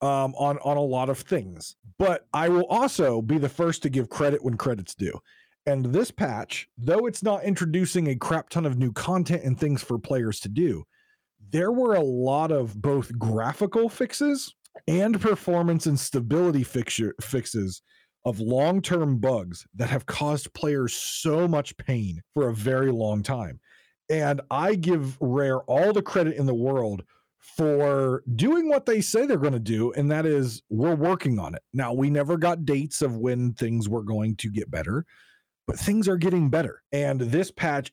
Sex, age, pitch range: male, 40-59, 125-175 Hz